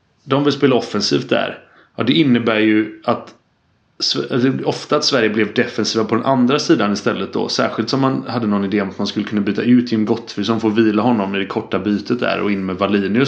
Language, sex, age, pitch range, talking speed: English, male, 30-49, 105-125 Hz, 220 wpm